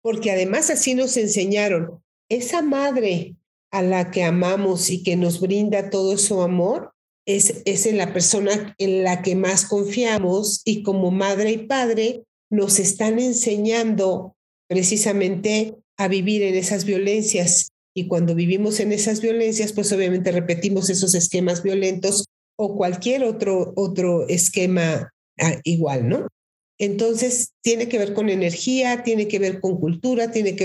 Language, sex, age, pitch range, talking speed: Spanish, female, 50-69, 180-220 Hz, 145 wpm